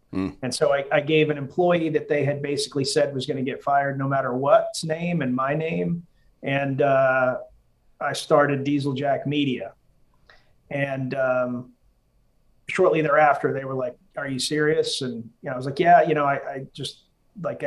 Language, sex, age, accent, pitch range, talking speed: English, male, 30-49, American, 135-155 Hz, 185 wpm